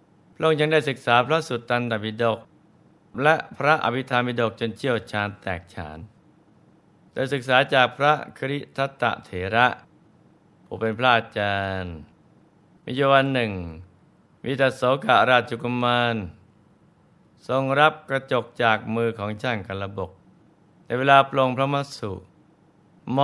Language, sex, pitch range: Thai, male, 105-135 Hz